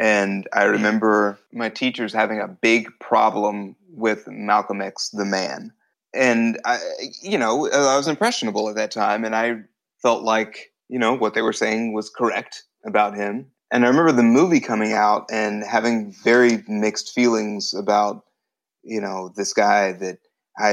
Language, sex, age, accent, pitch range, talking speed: English, male, 30-49, American, 105-125 Hz, 165 wpm